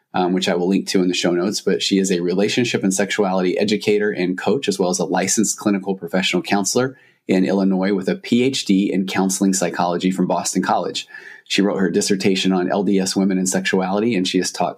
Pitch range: 90-105 Hz